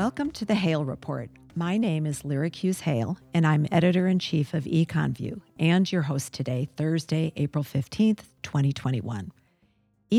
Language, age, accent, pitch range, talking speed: English, 50-69, American, 135-170 Hz, 135 wpm